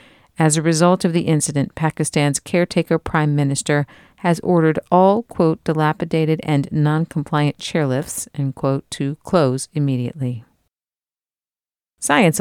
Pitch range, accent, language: 140-175 Hz, American, English